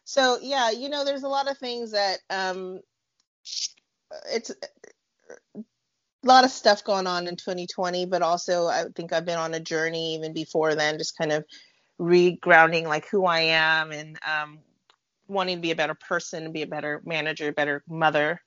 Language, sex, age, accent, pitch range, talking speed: English, female, 30-49, American, 160-200 Hz, 175 wpm